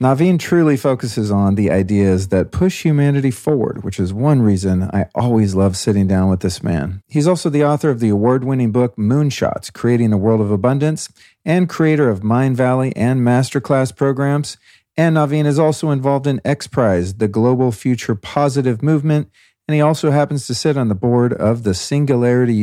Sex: male